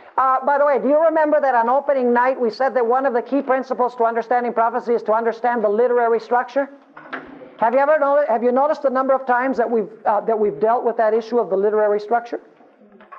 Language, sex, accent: English, male, American